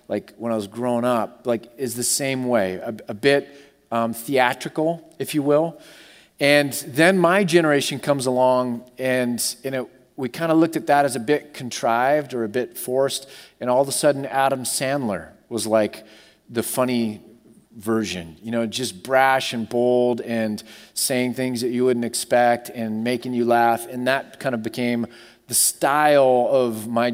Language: English